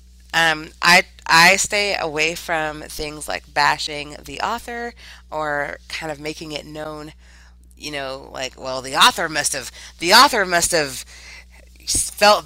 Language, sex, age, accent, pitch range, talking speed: English, female, 30-49, American, 125-175 Hz, 145 wpm